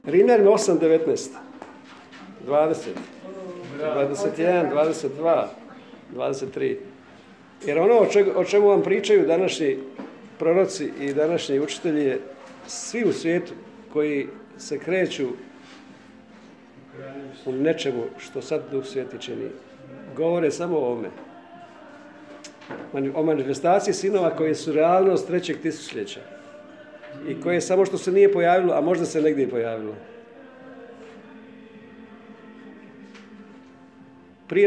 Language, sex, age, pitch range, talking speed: Croatian, male, 50-69, 155-260 Hz, 95 wpm